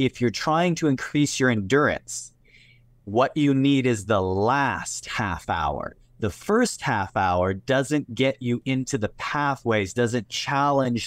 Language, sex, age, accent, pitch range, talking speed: English, male, 30-49, American, 110-130 Hz, 145 wpm